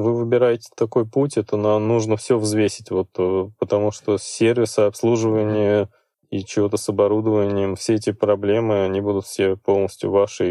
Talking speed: 150 wpm